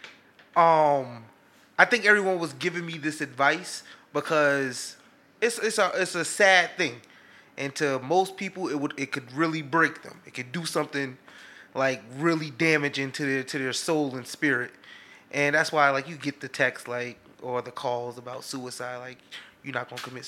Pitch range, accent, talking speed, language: 135-165 Hz, American, 180 wpm, English